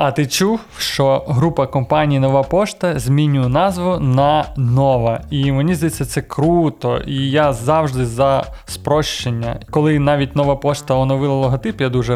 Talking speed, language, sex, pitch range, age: 150 wpm, Ukrainian, male, 135-155 Hz, 20-39